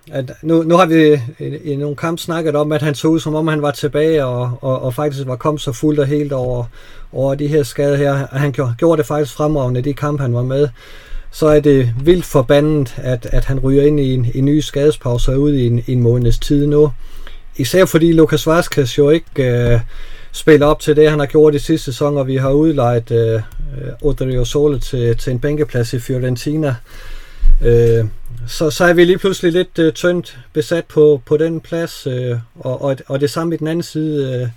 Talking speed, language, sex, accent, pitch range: 215 wpm, Danish, male, native, 125-155 Hz